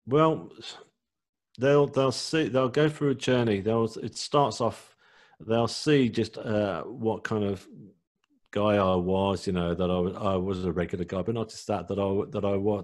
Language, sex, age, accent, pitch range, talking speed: English, male, 40-59, British, 95-115 Hz, 190 wpm